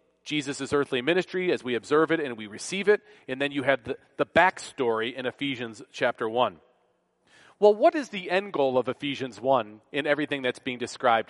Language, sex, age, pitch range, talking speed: English, male, 40-59, 135-180 Hz, 190 wpm